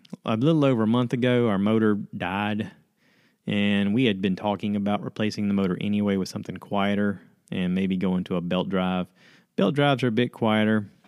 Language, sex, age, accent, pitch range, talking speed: English, male, 30-49, American, 95-130 Hz, 190 wpm